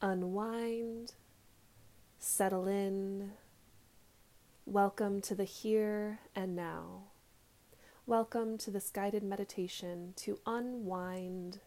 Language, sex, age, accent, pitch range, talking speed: English, female, 20-39, American, 175-220 Hz, 80 wpm